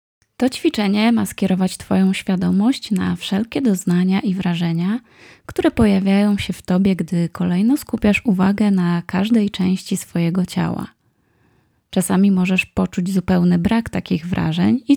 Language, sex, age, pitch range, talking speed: Polish, female, 20-39, 180-220 Hz, 130 wpm